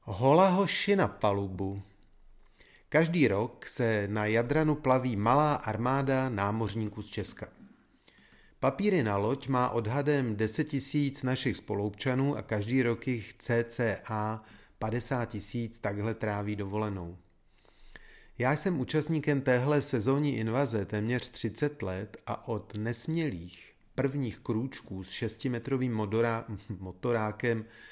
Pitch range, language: 105-130 Hz, Czech